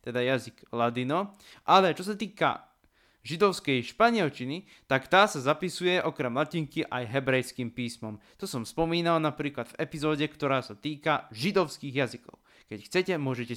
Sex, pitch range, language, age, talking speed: male, 130-170 Hz, Slovak, 20-39, 140 wpm